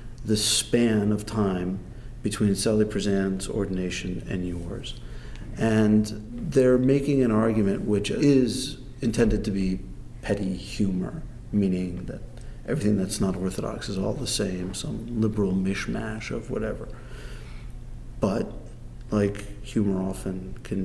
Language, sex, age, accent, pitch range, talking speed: English, male, 50-69, American, 95-120 Hz, 120 wpm